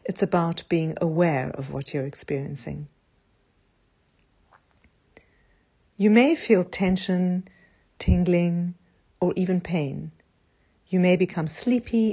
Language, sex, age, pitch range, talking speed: Dutch, female, 50-69, 145-190 Hz, 100 wpm